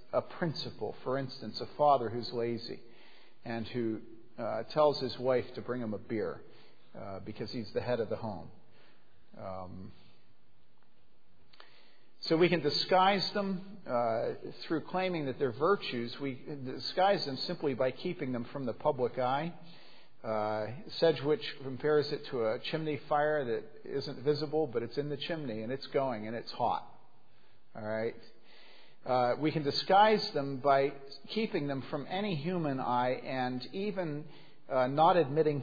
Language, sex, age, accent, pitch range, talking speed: English, male, 50-69, American, 115-155 Hz, 155 wpm